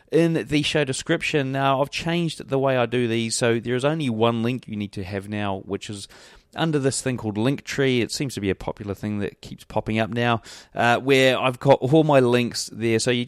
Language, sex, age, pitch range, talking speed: English, male, 30-49, 105-135 Hz, 235 wpm